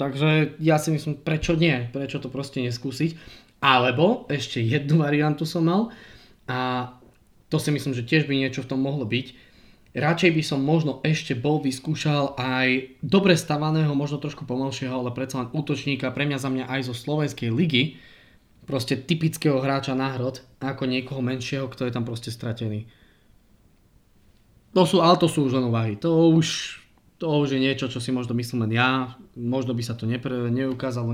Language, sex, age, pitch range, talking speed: Slovak, male, 20-39, 125-155 Hz, 175 wpm